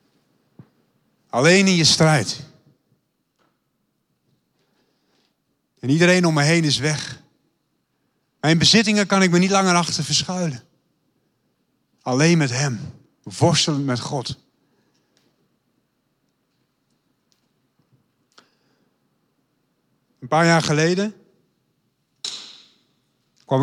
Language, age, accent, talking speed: Dutch, 40-59, Dutch, 80 wpm